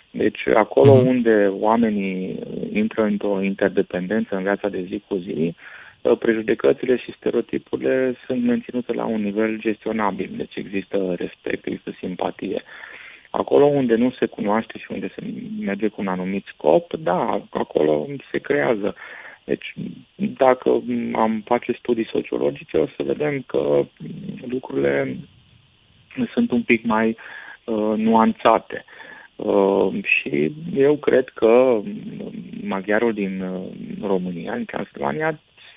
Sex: male